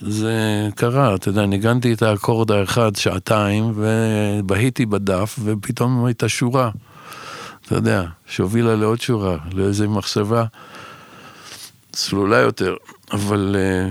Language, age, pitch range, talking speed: Hebrew, 60-79, 105-130 Hz, 105 wpm